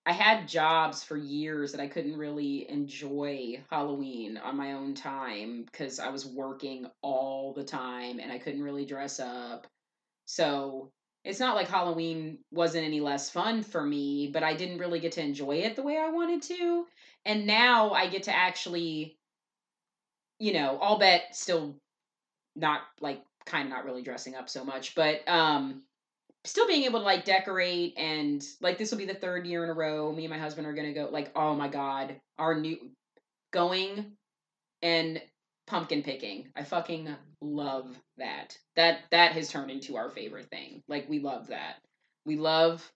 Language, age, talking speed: English, 30-49, 180 wpm